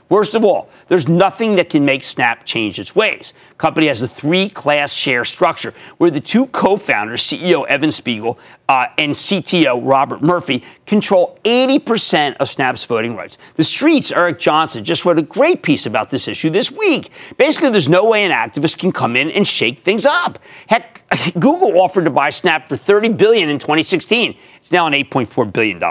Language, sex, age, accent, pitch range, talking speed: English, male, 50-69, American, 140-200 Hz, 185 wpm